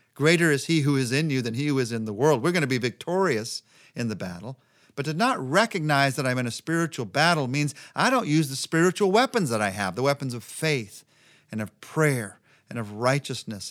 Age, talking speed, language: 50-69, 225 wpm, English